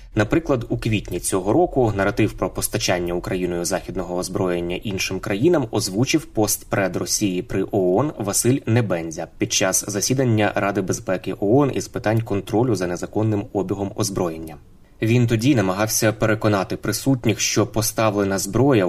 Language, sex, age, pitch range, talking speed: Ukrainian, male, 20-39, 95-110 Hz, 135 wpm